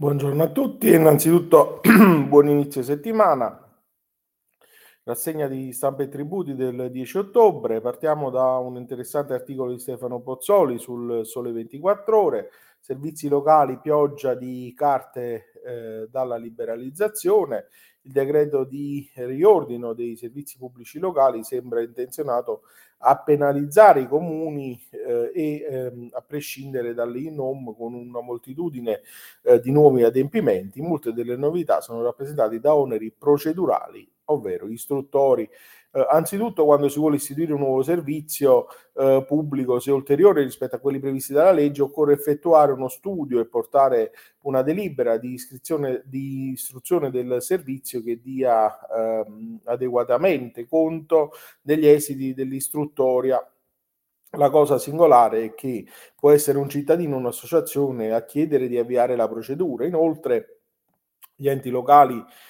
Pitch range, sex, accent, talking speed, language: 125-155 Hz, male, native, 130 wpm, Italian